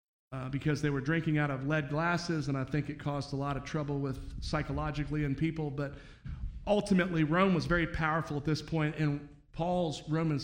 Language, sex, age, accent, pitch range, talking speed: English, male, 40-59, American, 145-195 Hz, 195 wpm